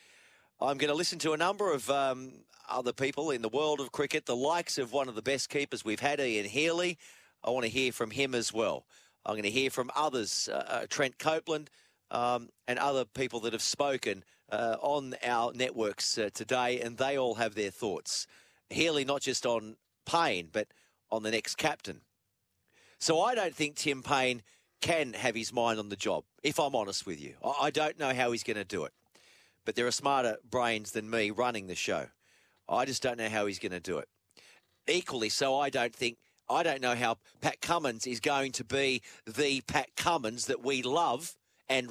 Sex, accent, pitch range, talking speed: male, Australian, 115-145 Hz, 205 wpm